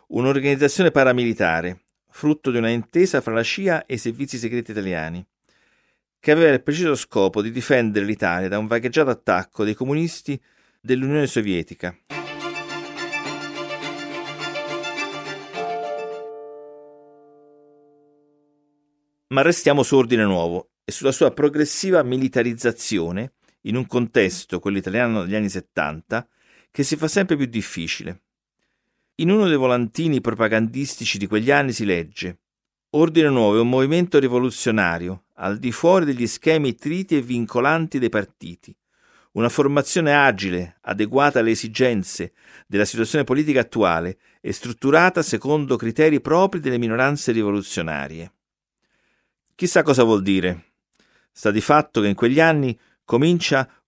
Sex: male